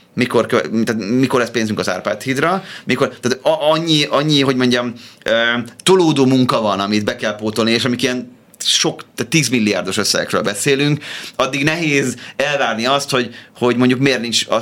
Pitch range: 110-140 Hz